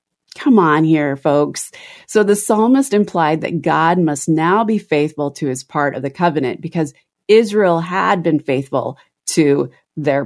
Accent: American